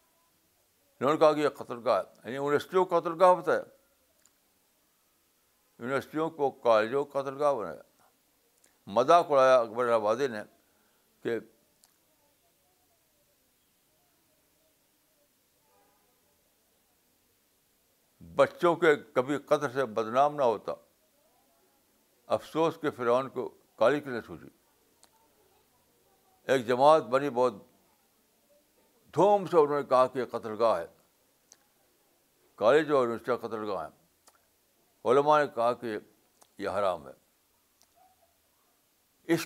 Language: Urdu